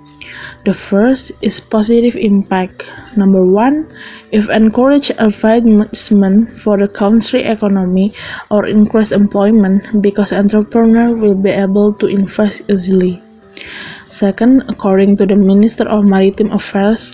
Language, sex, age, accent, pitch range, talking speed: English, female, 20-39, Indonesian, 200-225 Hz, 115 wpm